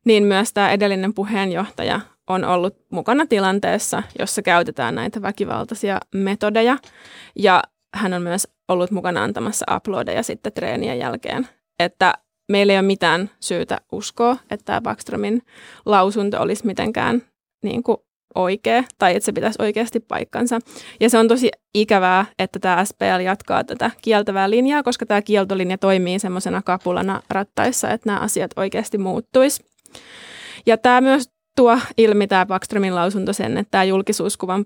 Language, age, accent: Finnish, 20-39, native